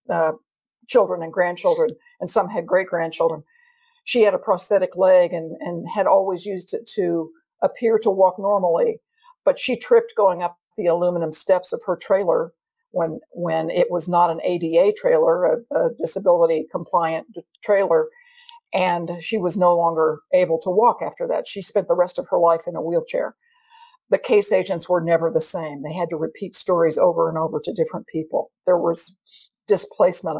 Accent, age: American, 50-69